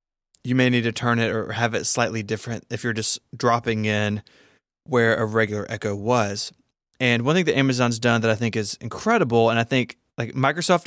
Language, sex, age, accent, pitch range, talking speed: English, male, 20-39, American, 110-130 Hz, 205 wpm